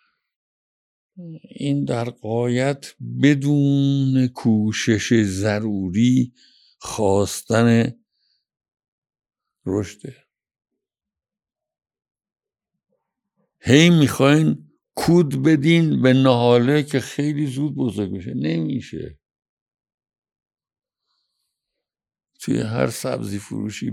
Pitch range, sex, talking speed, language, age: 100-130 Hz, male, 65 wpm, Persian, 60-79